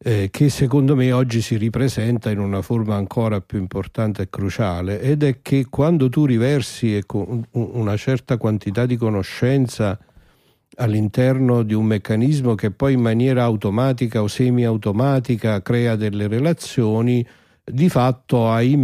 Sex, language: male, Italian